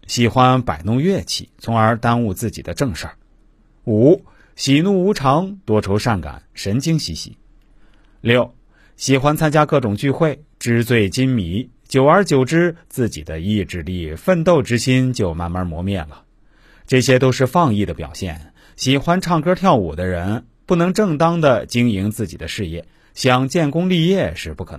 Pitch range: 100-155 Hz